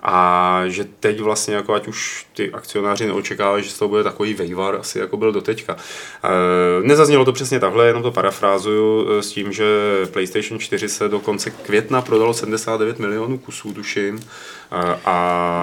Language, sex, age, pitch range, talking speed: Czech, male, 30-49, 90-110 Hz, 155 wpm